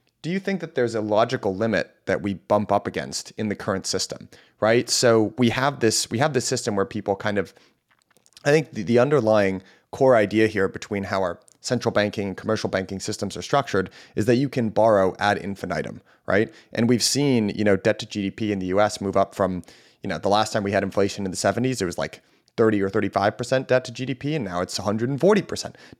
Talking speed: 215 wpm